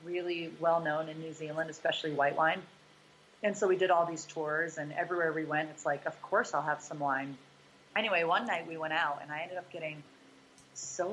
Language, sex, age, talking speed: English, female, 30-49, 210 wpm